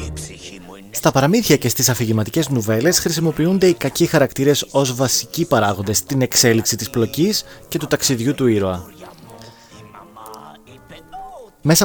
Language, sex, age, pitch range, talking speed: Greek, male, 30-49, 120-170 Hz, 115 wpm